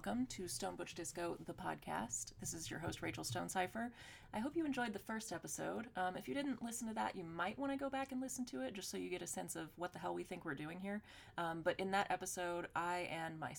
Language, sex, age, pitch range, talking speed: English, female, 30-49, 155-205 Hz, 265 wpm